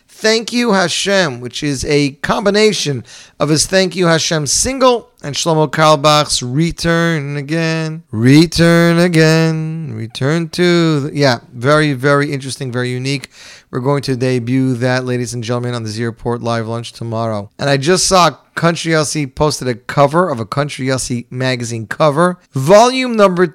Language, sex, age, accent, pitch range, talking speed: English, male, 40-59, American, 135-190 Hz, 150 wpm